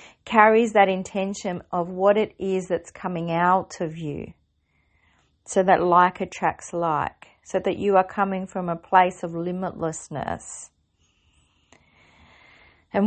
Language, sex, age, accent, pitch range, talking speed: English, female, 40-59, Australian, 165-200 Hz, 130 wpm